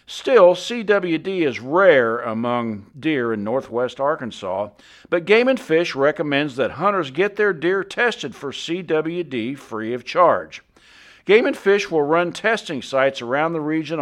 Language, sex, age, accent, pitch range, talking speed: English, male, 50-69, American, 130-185 Hz, 150 wpm